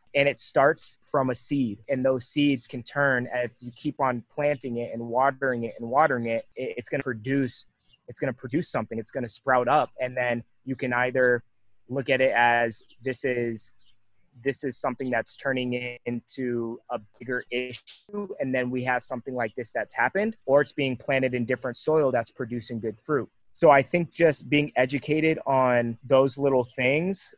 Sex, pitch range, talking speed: male, 120-140 Hz, 195 wpm